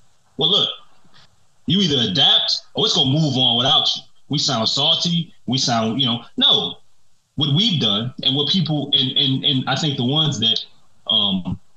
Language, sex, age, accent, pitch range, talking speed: English, male, 20-39, American, 120-155 Hz, 180 wpm